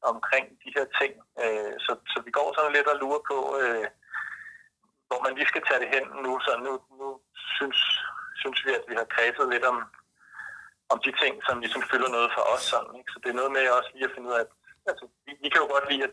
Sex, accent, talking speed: male, native, 240 wpm